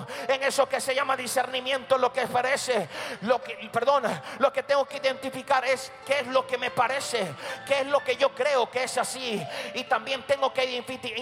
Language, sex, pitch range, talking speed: Spanish, male, 245-270 Hz, 200 wpm